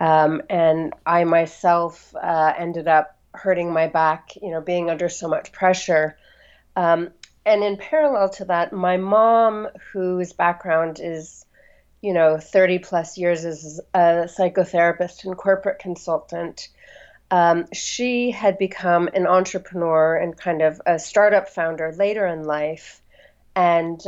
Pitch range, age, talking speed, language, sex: 165-195 Hz, 30-49, 135 wpm, English, female